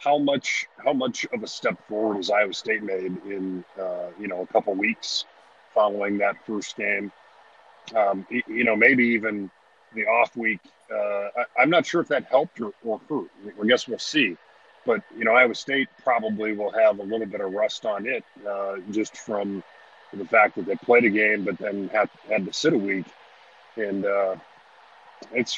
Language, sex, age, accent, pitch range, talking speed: English, male, 40-59, American, 100-115 Hz, 190 wpm